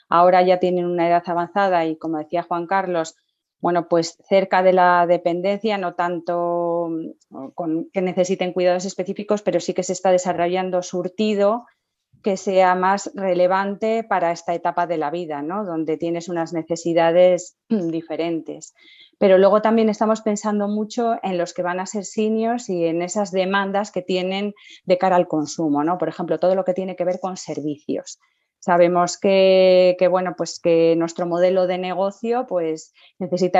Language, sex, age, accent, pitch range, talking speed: Spanish, female, 30-49, Spanish, 165-185 Hz, 165 wpm